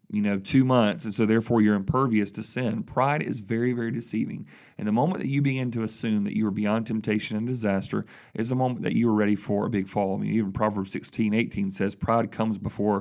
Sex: male